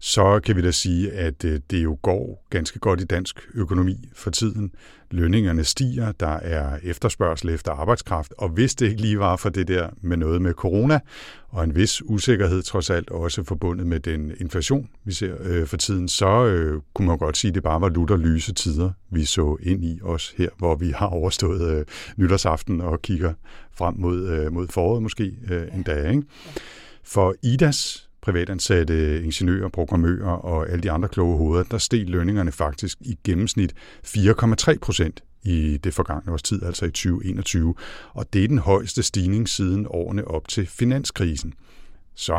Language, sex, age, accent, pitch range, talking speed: Danish, male, 60-79, native, 80-100 Hz, 180 wpm